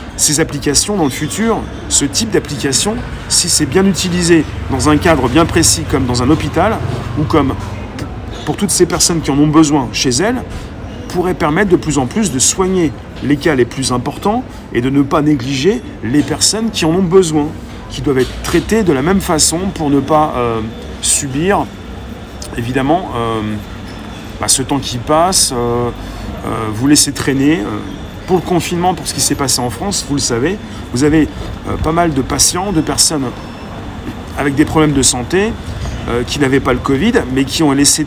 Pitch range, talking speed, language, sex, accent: 115-155 Hz, 190 wpm, French, male, French